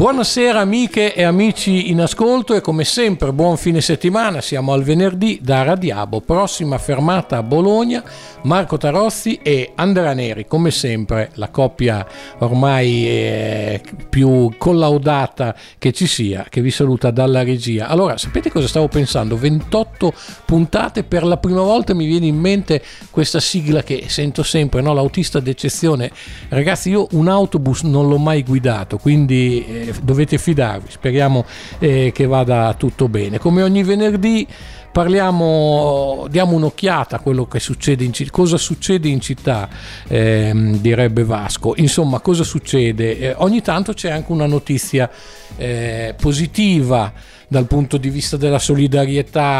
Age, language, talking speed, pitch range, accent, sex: 50-69, Italian, 140 wpm, 125-175 Hz, native, male